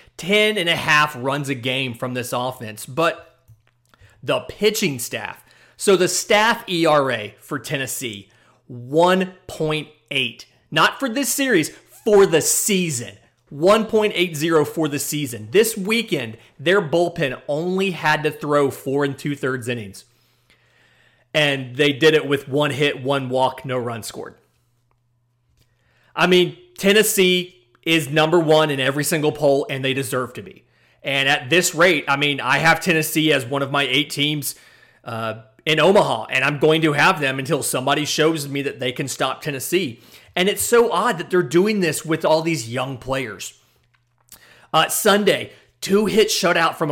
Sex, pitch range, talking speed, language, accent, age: male, 130-175 Hz, 160 wpm, English, American, 30-49